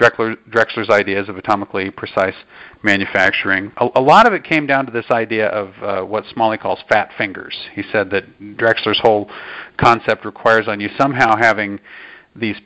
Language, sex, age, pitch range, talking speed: English, male, 40-59, 105-130 Hz, 165 wpm